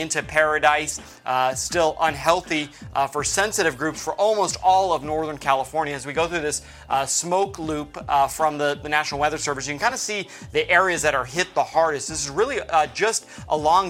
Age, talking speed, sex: 30-49, 205 wpm, male